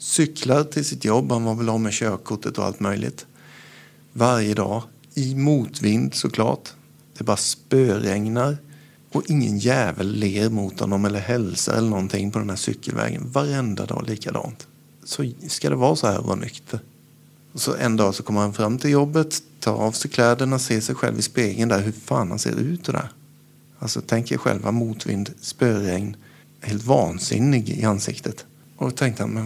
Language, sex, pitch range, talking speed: Swedish, male, 105-130 Hz, 175 wpm